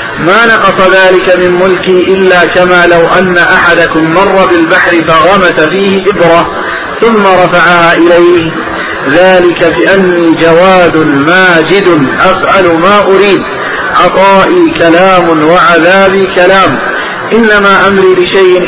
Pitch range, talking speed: 160-185 Hz, 105 wpm